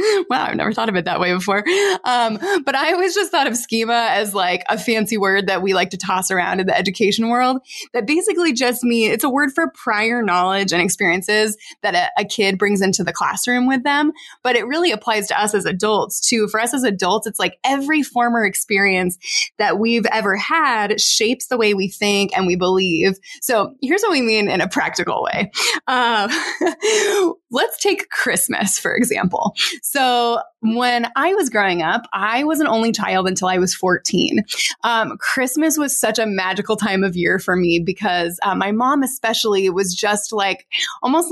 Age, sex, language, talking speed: 20-39, female, English, 195 wpm